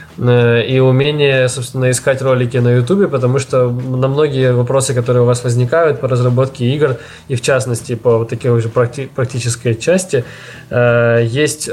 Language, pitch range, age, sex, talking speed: Russian, 120-135 Hz, 20-39, male, 155 wpm